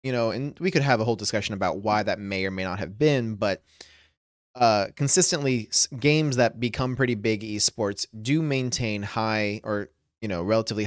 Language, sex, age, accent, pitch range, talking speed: English, male, 30-49, American, 105-130 Hz, 190 wpm